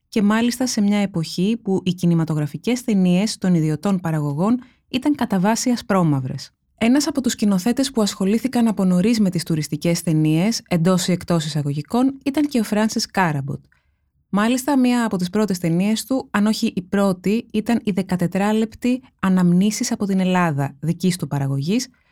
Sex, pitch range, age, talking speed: female, 170-220 Hz, 20-39, 155 wpm